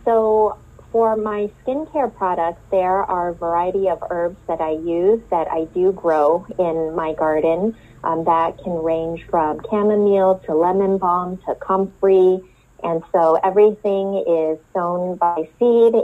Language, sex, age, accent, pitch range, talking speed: English, female, 30-49, American, 160-195 Hz, 145 wpm